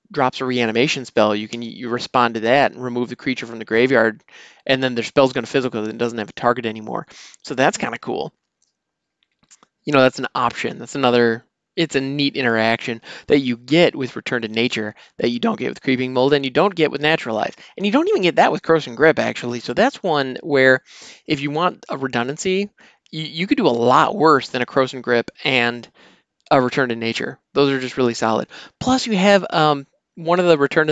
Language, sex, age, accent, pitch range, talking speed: English, male, 20-39, American, 120-155 Hz, 225 wpm